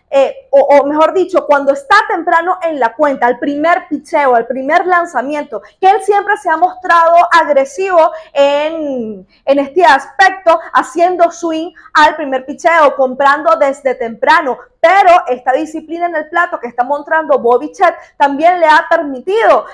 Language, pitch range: Spanish, 265-335 Hz